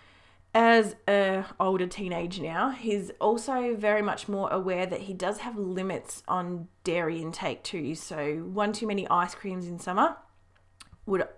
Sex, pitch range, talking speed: female, 175-215 Hz, 155 wpm